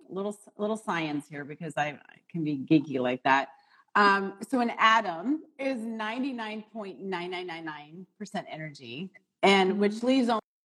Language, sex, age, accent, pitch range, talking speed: English, female, 30-49, American, 175-240 Hz, 175 wpm